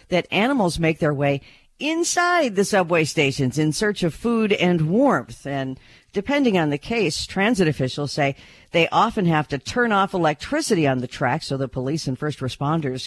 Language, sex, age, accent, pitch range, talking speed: English, female, 50-69, American, 130-180 Hz, 180 wpm